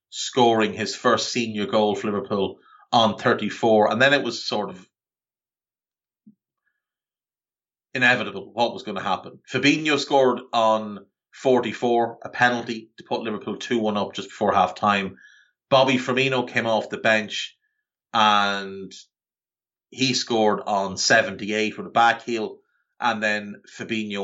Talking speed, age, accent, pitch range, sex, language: 130 wpm, 30-49, Irish, 110-145 Hz, male, English